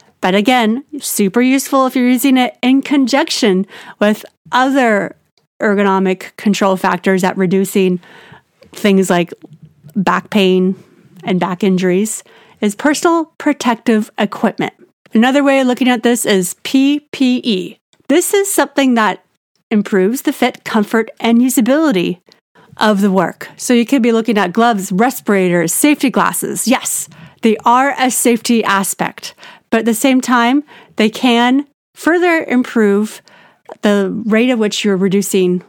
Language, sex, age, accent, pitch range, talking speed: English, female, 30-49, American, 200-265 Hz, 135 wpm